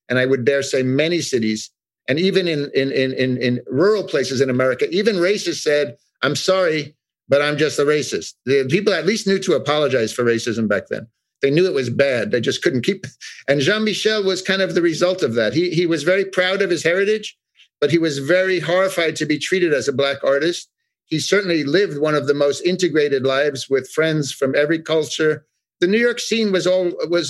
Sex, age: male, 50-69